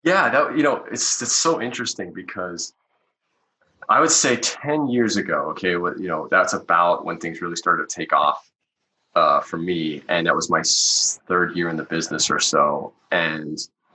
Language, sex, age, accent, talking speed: English, male, 30-49, American, 185 wpm